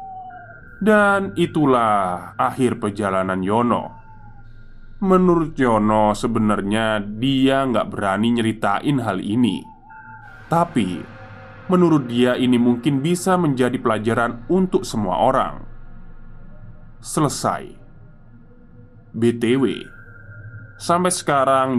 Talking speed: 80 wpm